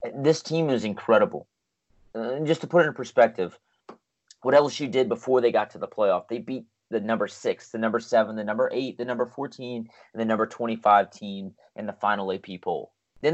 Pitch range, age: 105-125 Hz, 30-49